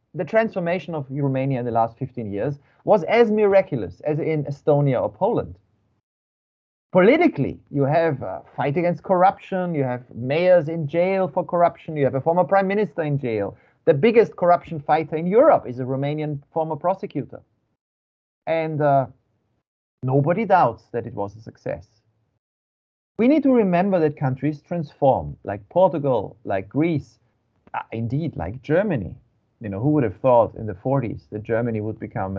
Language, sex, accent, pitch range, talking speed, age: English, male, German, 115-170 Hz, 160 wpm, 30-49